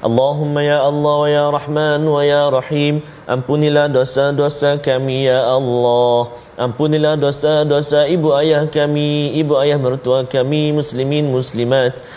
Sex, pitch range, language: male, 135-180 Hz, Malayalam